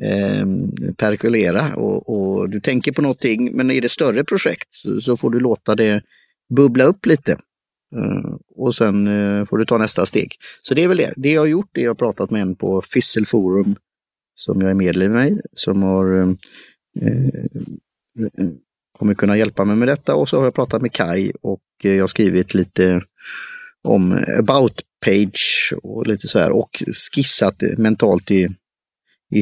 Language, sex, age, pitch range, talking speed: Swedish, male, 30-49, 95-120 Hz, 180 wpm